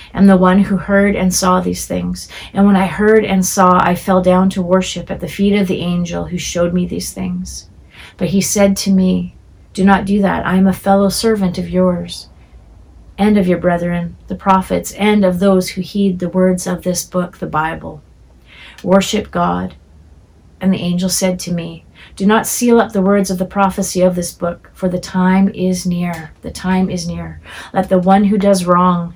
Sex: female